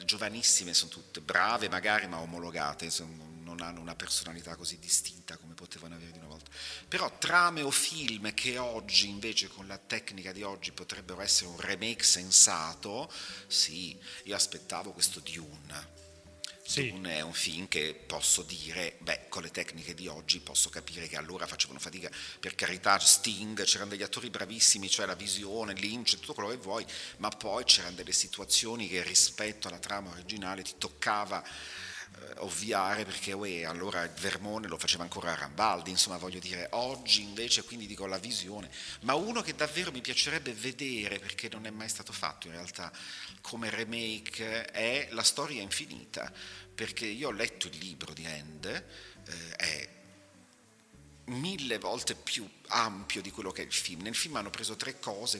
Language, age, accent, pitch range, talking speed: Italian, 40-59, native, 85-110 Hz, 165 wpm